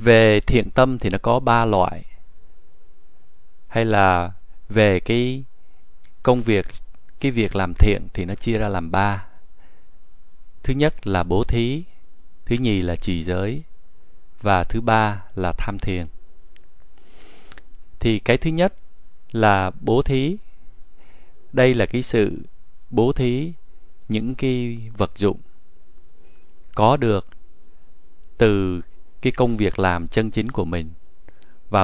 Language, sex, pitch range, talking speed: Vietnamese, male, 90-120 Hz, 130 wpm